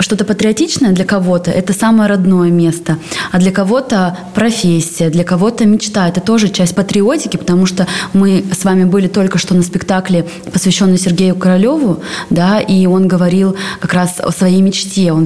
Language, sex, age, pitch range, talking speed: Russian, female, 20-39, 180-210 Hz, 160 wpm